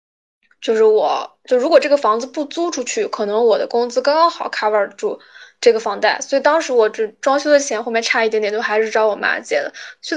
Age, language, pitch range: 10-29, Chinese, 225-300 Hz